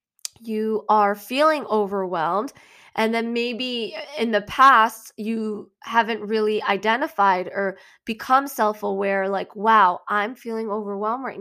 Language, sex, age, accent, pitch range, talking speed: English, female, 20-39, American, 200-235 Hz, 125 wpm